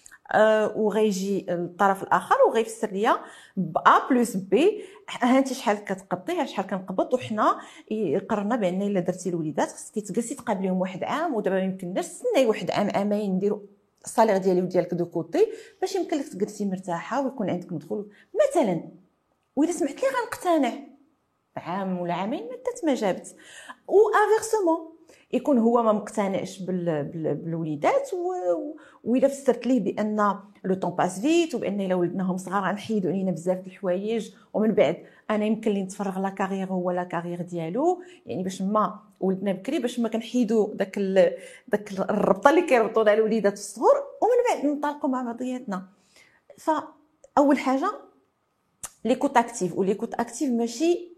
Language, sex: French, female